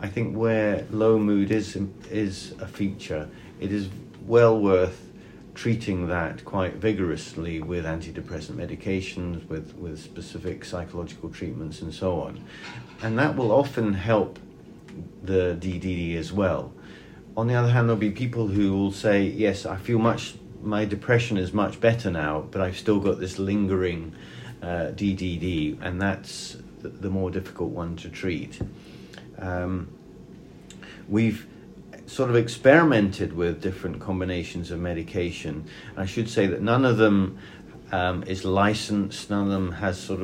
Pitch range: 90-110 Hz